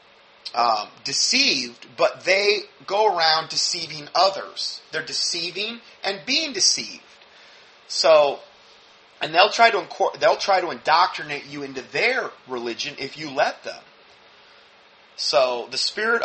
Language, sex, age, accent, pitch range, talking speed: English, male, 30-49, American, 125-160 Hz, 120 wpm